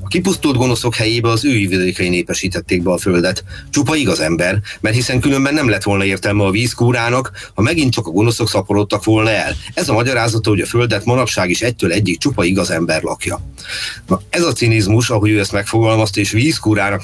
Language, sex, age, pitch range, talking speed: Hungarian, male, 30-49, 100-120 Hz, 190 wpm